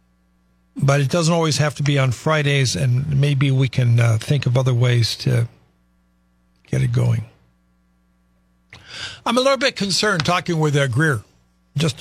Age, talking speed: 60-79, 160 wpm